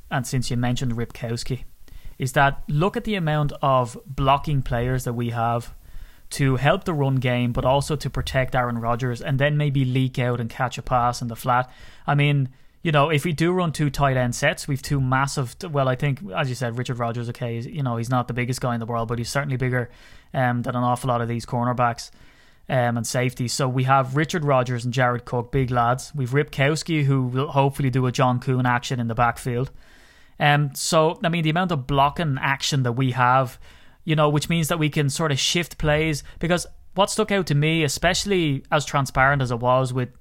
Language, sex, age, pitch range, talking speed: English, male, 20-39, 125-150 Hz, 220 wpm